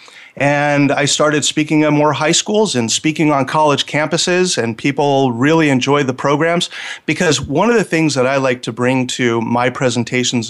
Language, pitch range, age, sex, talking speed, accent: English, 125-150 Hz, 40-59, male, 185 wpm, American